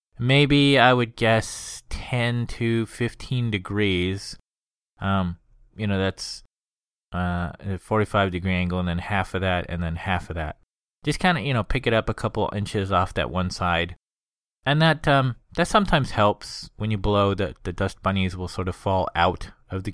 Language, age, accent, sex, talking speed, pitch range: English, 20-39, American, male, 185 wpm, 90-120 Hz